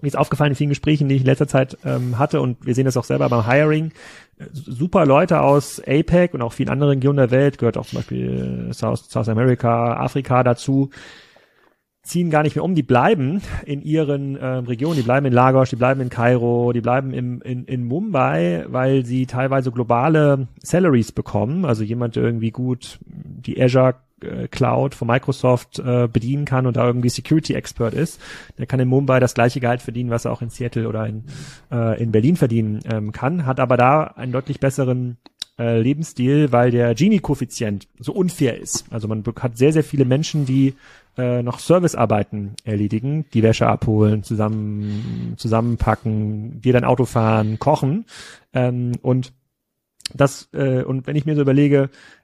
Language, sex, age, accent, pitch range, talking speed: German, male, 30-49, German, 120-140 Hz, 180 wpm